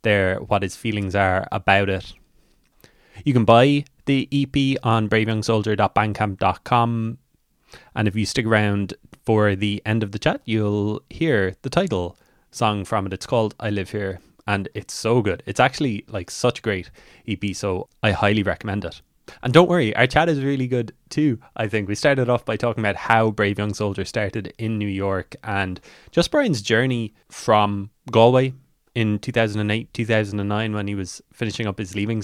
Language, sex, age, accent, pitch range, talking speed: English, male, 20-39, Irish, 100-120 Hz, 175 wpm